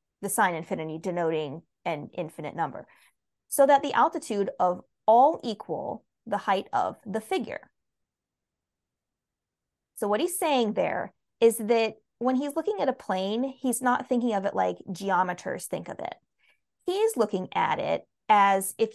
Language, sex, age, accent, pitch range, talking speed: English, female, 20-39, American, 195-245 Hz, 150 wpm